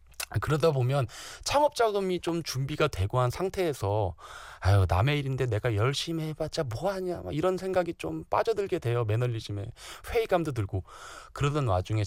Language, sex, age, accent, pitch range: Korean, male, 20-39, native, 100-155 Hz